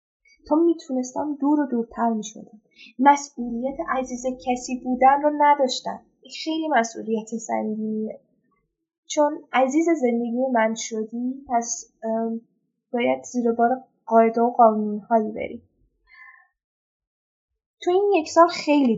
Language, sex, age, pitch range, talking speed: Persian, female, 10-29, 225-285 Hz, 105 wpm